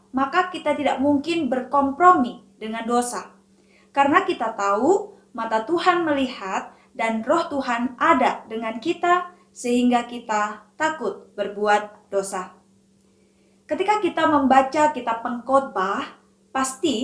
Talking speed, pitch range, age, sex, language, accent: 105 wpm, 220-290 Hz, 20-39, female, Indonesian, native